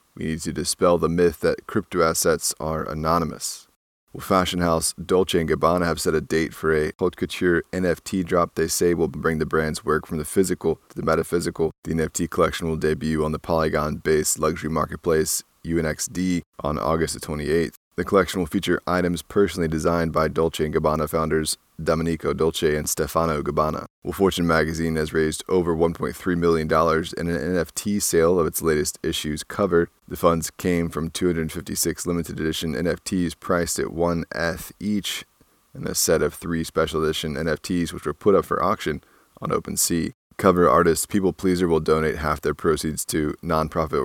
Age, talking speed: 20-39, 175 wpm